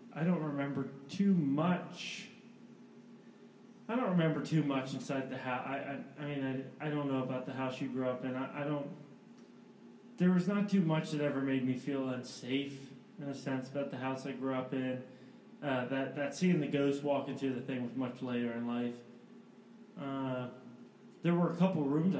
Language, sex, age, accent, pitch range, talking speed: English, male, 20-39, American, 130-155 Hz, 195 wpm